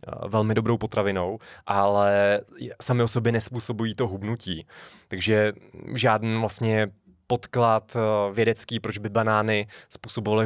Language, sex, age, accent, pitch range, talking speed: Czech, male, 20-39, native, 105-120 Hz, 105 wpm